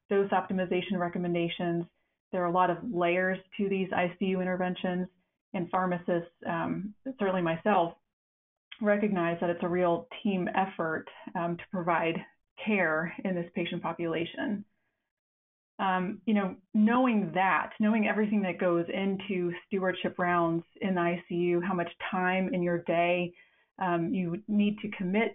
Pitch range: 175-205 Hz